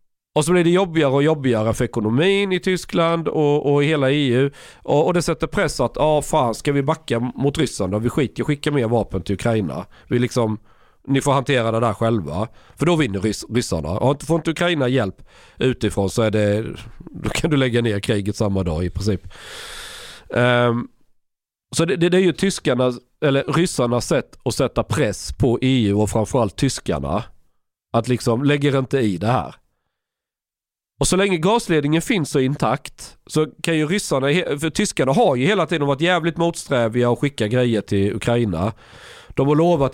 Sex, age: male, 40-59